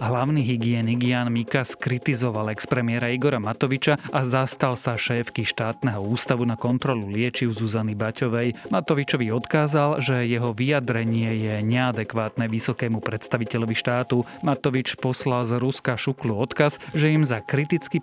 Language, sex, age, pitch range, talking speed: Slovak, male, 30-49, 115-130 Hz, 130 wpm